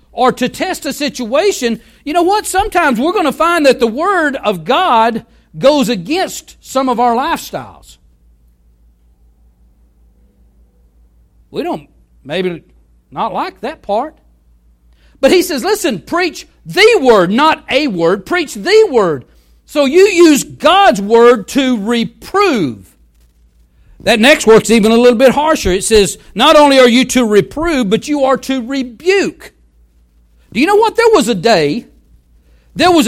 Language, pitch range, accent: English, 195-295 Hz, American